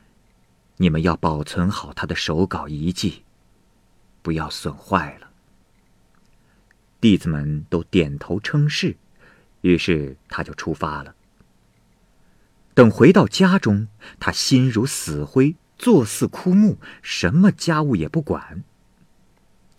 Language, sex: Chinese, male